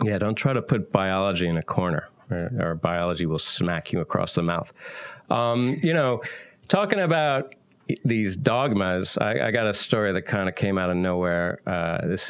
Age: 40-59